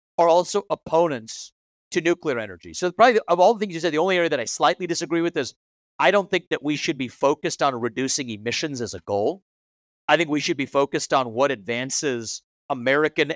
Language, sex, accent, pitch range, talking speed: English, male, American, 140-180 Hz, 210 wpm